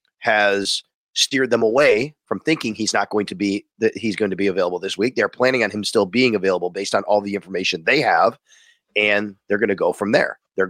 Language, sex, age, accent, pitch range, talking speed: English, male, 30-49, American, 100-120 Hz, 230 wpm